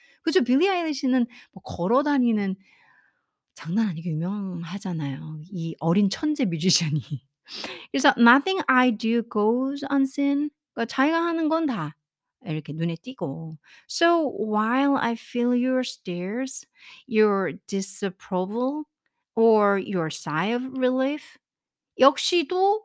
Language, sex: Korean, female